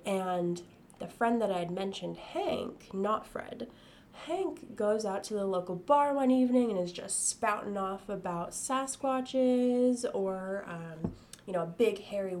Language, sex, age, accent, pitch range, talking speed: English, female, 10-29, American, 180-250 Hz, 160 wpm